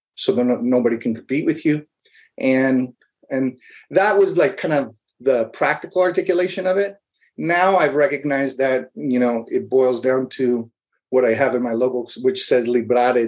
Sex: male